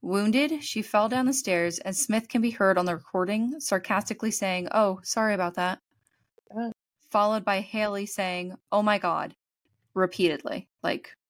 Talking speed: 155 wpm